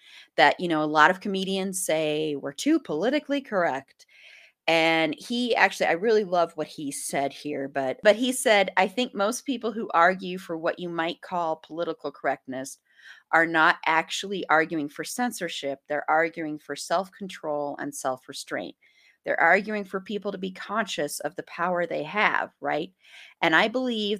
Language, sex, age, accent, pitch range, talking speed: English, female, 30-49, American, 155-205 Hz, 165 wpm